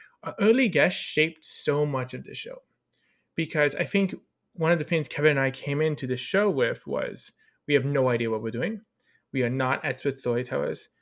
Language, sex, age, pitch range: English, male, 20-39, 130-180 Hz